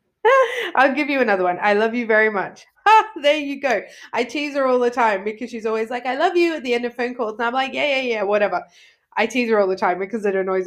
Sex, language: female, English